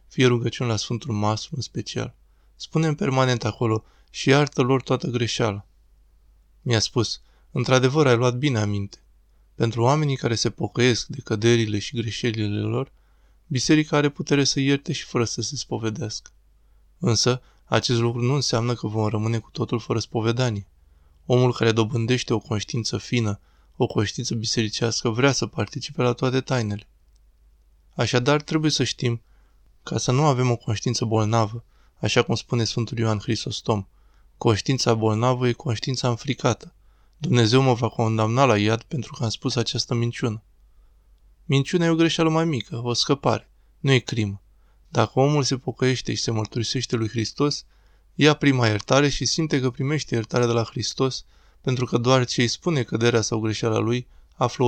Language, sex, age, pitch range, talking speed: Romanian, male, 20-39, 110-130 Hz, 160 wpm